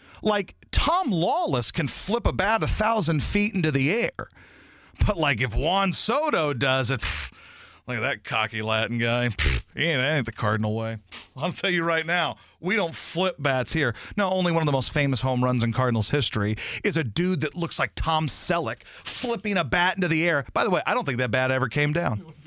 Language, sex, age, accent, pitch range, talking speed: English, male, 40-59, American, 125-195 Hz, 215 wpm